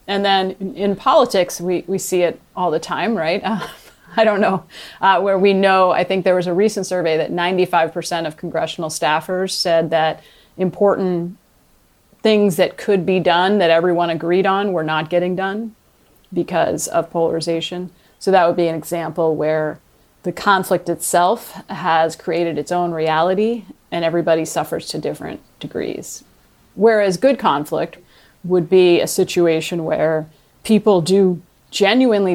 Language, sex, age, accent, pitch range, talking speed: English, female, 30-49, American, 165-195 Hz, 155 wpm